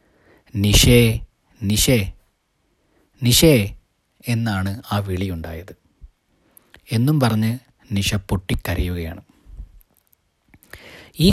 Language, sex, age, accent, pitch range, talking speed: Malayalam, male, 20-39, native, 95-125 Hz, 60 wpm